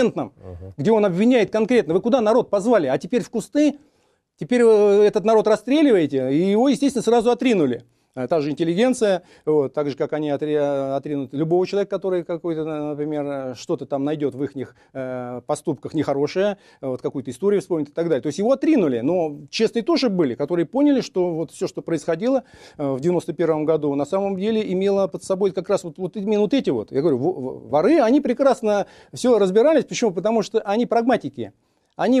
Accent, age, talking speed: native, 40-59, 180 wpm